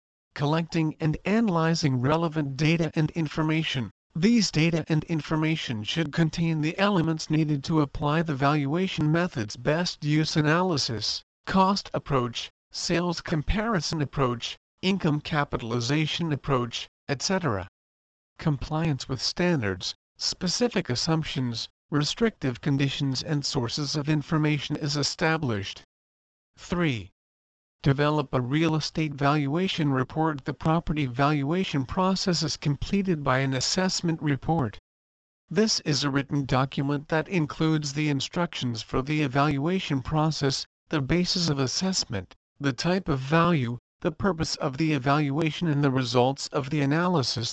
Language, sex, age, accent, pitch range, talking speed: English, male, 50-69, American, 130-160 Hz, 120 wpm